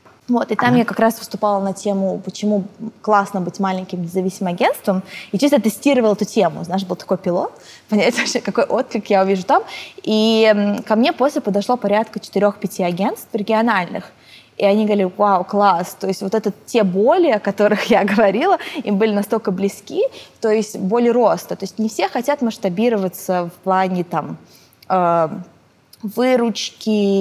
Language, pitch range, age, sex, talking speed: English, 190-225 Hz, 20-39, female, 160 wpm